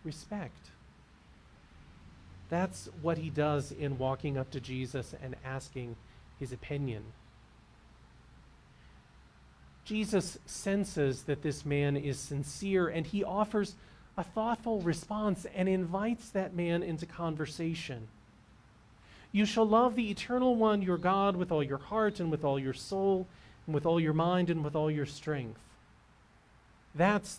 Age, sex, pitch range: 40-59, male, 135-185 Hz